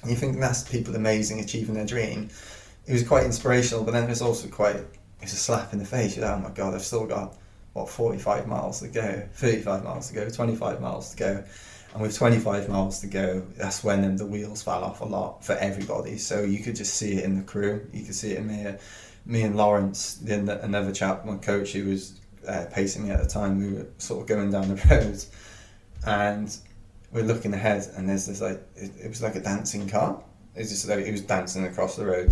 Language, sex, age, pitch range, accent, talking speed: English, male, 20-39, 95-115 Hz, British, 230 wpm